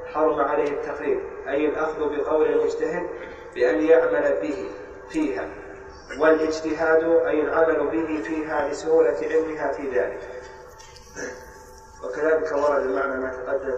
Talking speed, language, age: 110 wpm, Arabic, 30-49